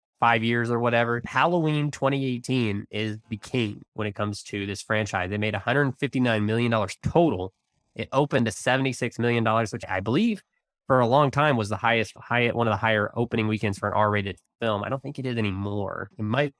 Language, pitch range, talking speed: English, 105-135 Hz, 190 wpm